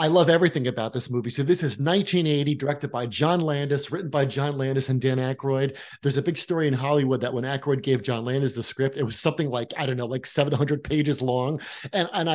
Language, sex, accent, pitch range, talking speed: English, male, American, 130-165 Hz, 235 wpm